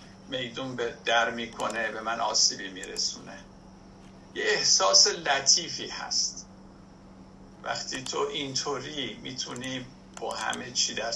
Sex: male